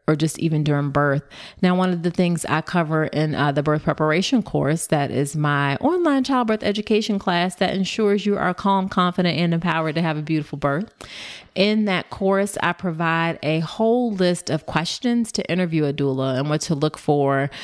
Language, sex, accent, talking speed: English, female, American, 195 wpm